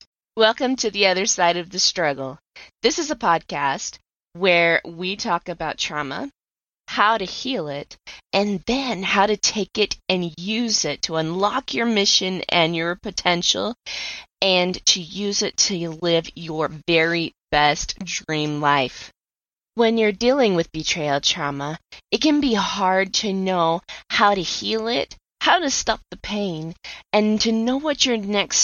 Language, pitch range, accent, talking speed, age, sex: English, 165-210 Hz, American, 155 wpm, 20-39, female